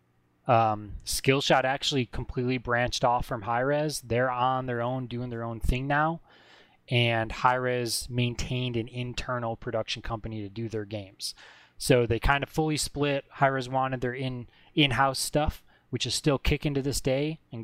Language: English